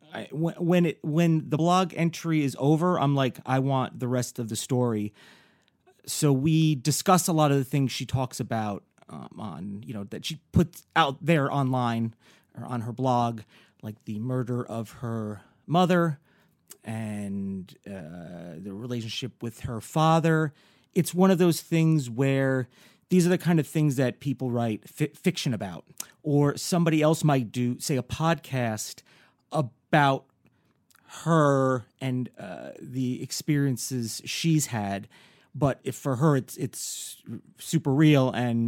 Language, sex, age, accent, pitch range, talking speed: English, male, 30-49, American, 115-155 Hz, 155 wpm